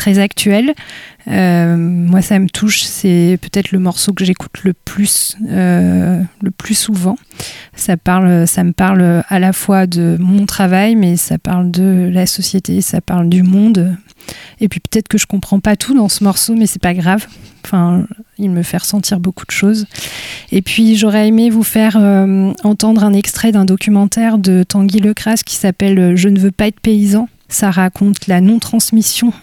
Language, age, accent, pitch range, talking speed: French, 20-39, French, 185-210 Hz, 180 wpm